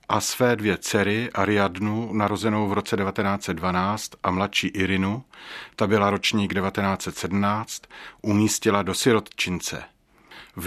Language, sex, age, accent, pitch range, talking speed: Czech, male, 40-59, native, 100-125 Hz, 110 wpm